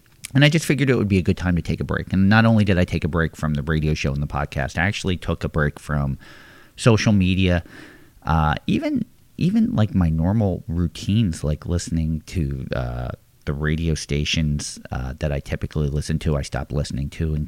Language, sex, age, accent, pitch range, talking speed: English, male, 40-59, American, 75-100 Hz, 215 wpm